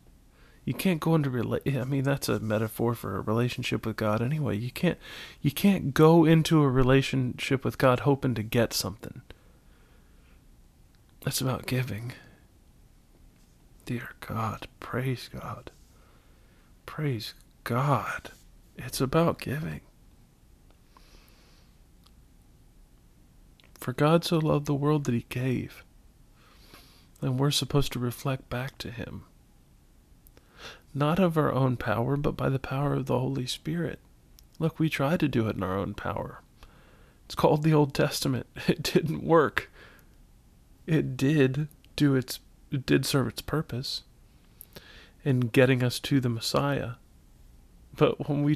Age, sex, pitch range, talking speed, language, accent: 40-59, male, 110-145 Hz, 125 wpm, English, American